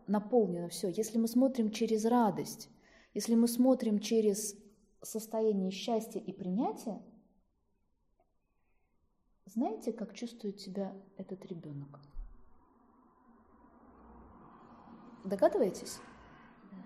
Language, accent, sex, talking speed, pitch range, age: Russian, native, female, 80 wpm, 200-245 Hz, 20-39